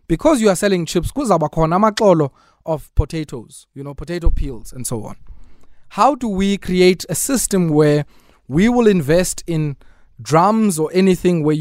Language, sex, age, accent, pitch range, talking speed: English, male, 30-49, South African, 140-185 Hz, 150 wpm